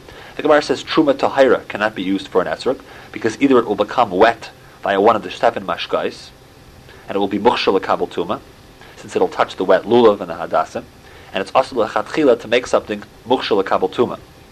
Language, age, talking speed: English, 40-59, 200 wpm